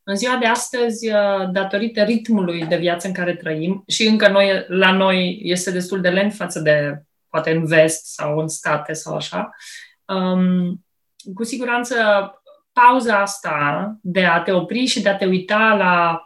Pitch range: 180-220 Hz